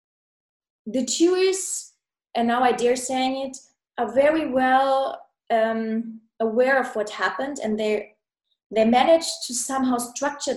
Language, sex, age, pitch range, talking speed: English, female, 20-39, 220-275 Hz, 130 wpm